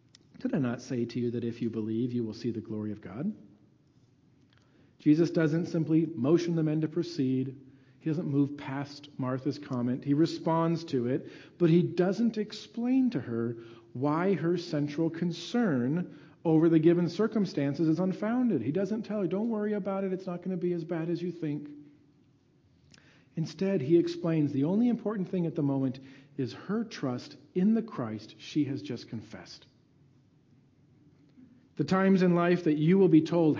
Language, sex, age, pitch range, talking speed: English, male, 40-59, 135-170 Hz, 175 wpm